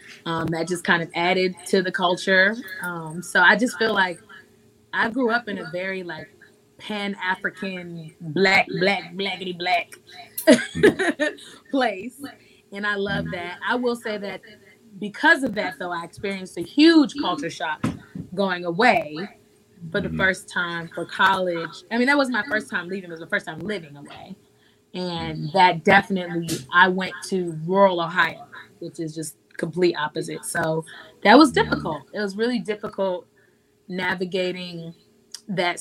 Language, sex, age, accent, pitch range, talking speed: English, female, 20-39, American, 170-200 Hz, 155 wpm